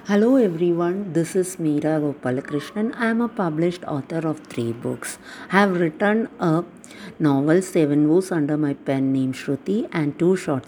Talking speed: 165 wpm